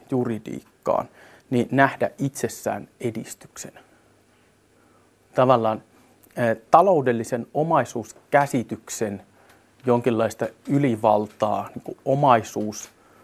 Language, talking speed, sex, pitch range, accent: Finnish, 60 wpm, male, 115-140 Hz, native